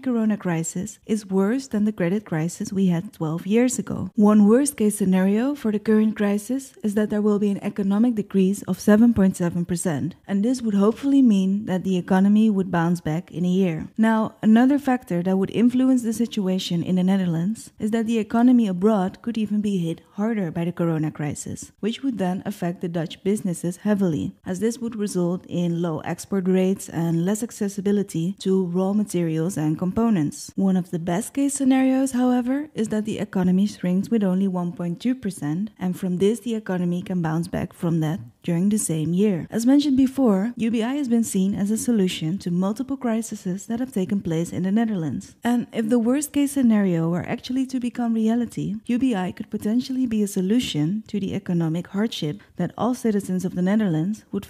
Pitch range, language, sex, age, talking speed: 180-230 Hz, English, female, 20-39, 190 wpm